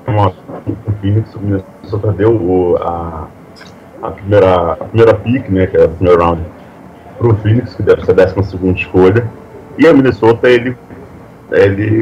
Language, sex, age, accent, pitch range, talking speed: Portuguese, male, 30-49, Brazilian, 95-115 Hz, 160 wpm